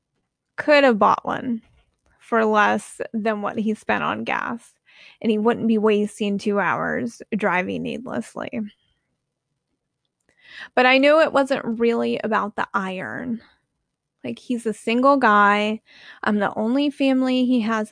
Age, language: 20-39, English